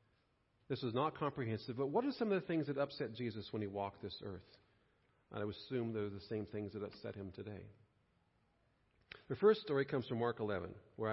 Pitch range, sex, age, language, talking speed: 115-155 Hz, male, 40-59, English, 210 wpm